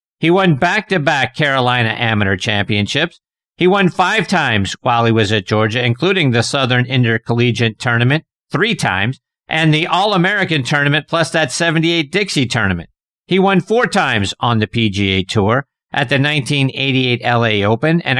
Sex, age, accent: male, 50-69, American